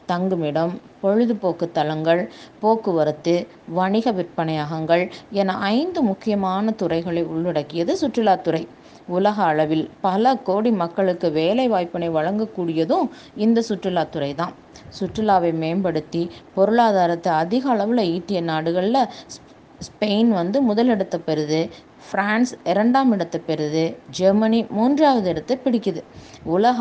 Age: 20-39